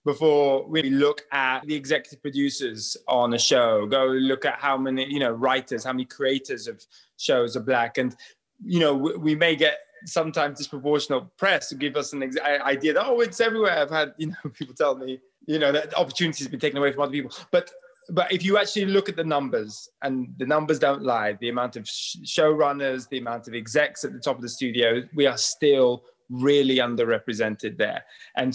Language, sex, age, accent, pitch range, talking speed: English, male, 20-39, British, 130-195 Hz, 205 wpm